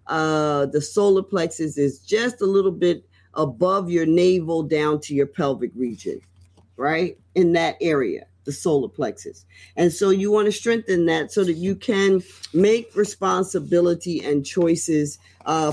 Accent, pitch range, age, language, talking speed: American, 130-180 Hz, 40-59, English, 155 wpm